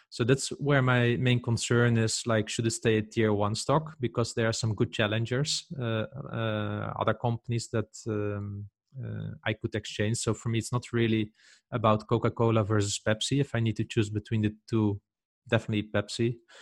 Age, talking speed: 20-39, 195 wpm